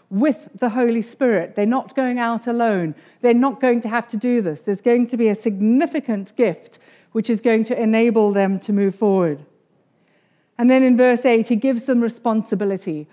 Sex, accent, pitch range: female, British, 220-275 Hz